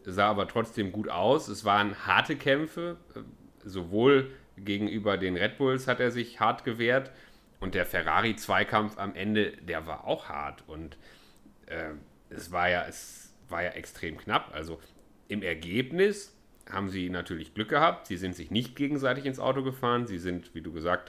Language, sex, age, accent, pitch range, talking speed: German, male, 40-59, German, 95-130 Hz, 160 wpm